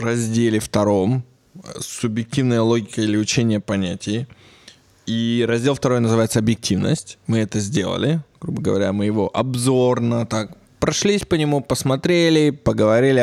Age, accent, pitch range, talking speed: 20-39, native, 110-130 Hz, 115 wpm